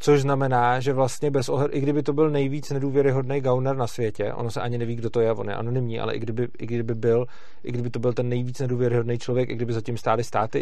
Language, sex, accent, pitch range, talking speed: Czech, male, native, 120-135 Hz, 250 wpm